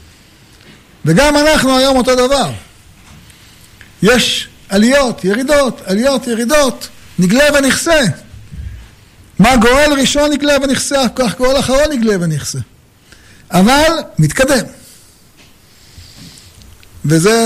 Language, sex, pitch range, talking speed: Hebrew, male, 155-245 Hz, 85 wpm